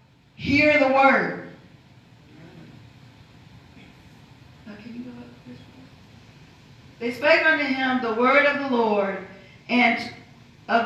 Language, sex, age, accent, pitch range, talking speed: English, female, 40-59, American, 180-270 Hz, 75 wpm